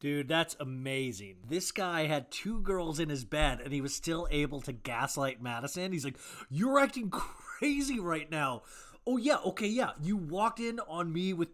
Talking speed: 185 wpm